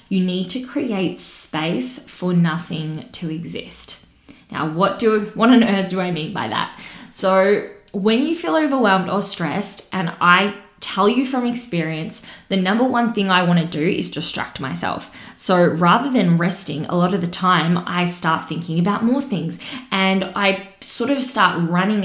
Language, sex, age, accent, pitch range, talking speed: English, female, 20-39, Australian, 170-200 Hz, 175 wpm